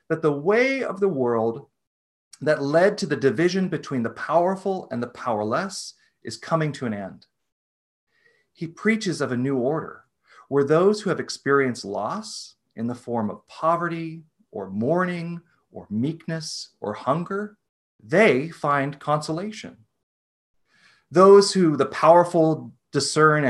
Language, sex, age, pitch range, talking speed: English, male, 40-59, 120-185 Hz, 135 wpm